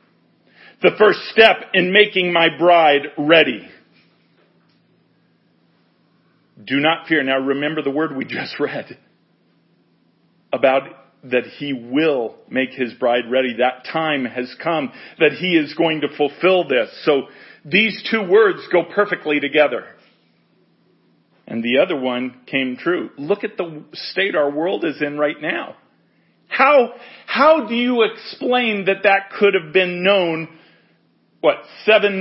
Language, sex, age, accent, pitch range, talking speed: English, male, 40-59, American, 135-205 Hz, 135 wpm